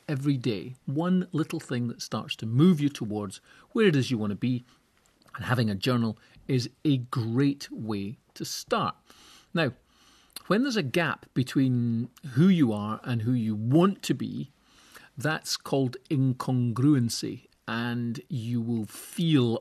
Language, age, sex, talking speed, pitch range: English, 40-59, male, 155 wpm, 115-140 Hz